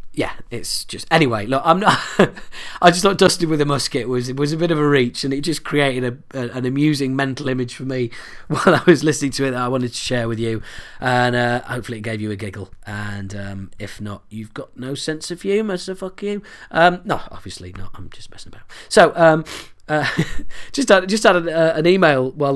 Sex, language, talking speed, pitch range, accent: male, English, 240 wpm, 120-165 Hz, British